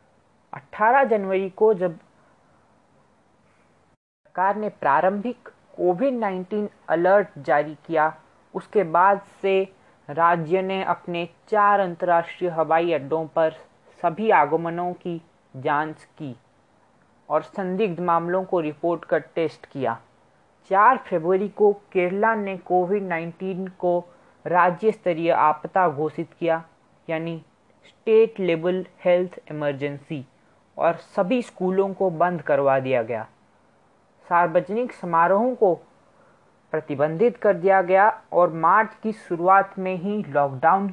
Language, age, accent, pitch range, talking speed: Hindi, 20-39, native, 160-195 Hz, 110 wpm